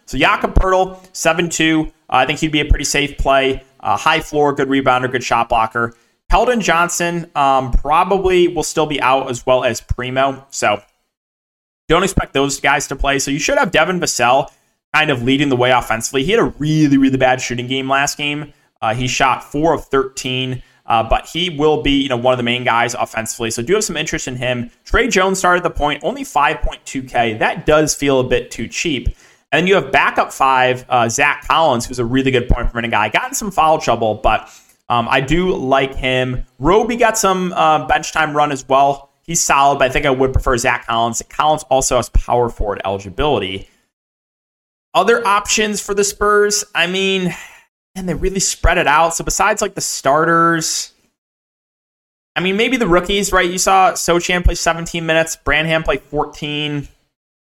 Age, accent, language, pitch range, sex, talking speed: 20-39, American, English, 130-170 Hz, male, 195 wpm